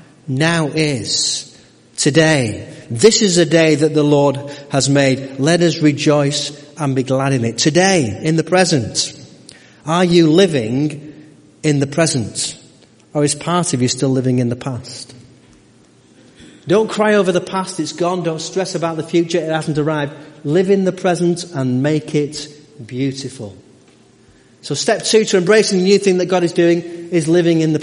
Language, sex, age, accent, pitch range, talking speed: English, male, 40-59, British, 130-175 Hz, 170 wpm